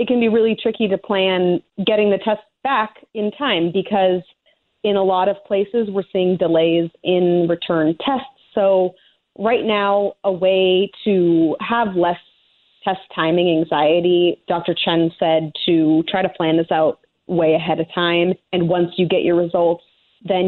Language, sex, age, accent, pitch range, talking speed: English, female, 30-49, American, 170-205 Hz, 165 wpm